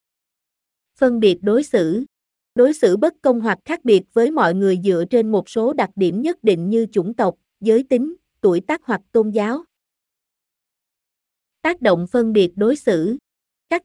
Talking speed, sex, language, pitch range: 170 wpm, female, Vietnamese, 205-270 Hz